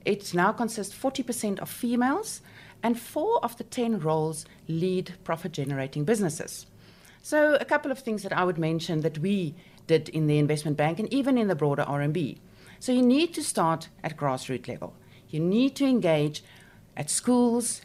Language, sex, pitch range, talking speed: English, female, 160-240 Hz, 170 wpm